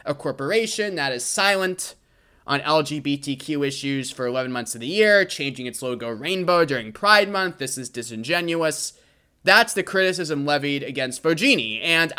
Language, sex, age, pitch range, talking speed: English, male, 20-39, 140-205 Hz, 155 wpm